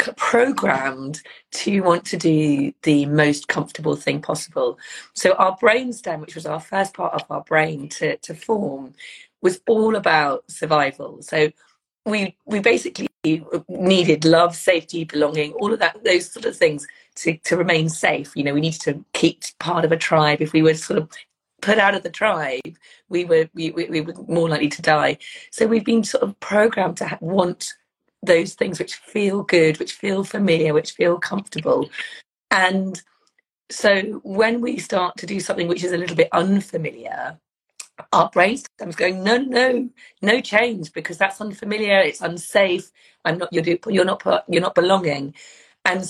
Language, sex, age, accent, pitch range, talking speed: English, female, 30-49, British, 160-215 Hz, 175 wpm